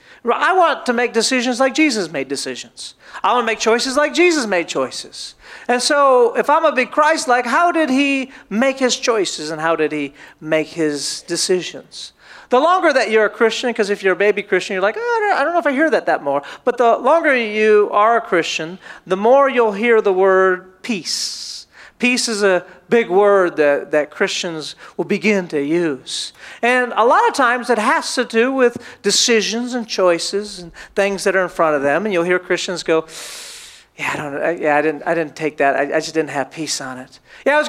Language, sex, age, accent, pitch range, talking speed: English, male, 40-59, American, 195-280 Hz, 220 wpm